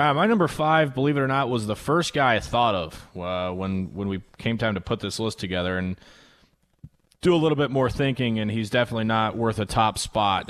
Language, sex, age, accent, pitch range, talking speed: English, male, 20-39, American, 110-140 Hz, 230 wpm